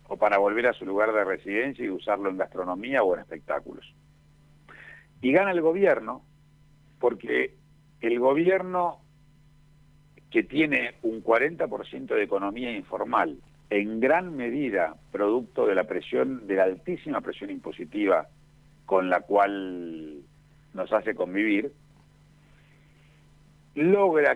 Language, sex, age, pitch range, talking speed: Spanish, male, 70-89, 125-160 Hz, 120 wpm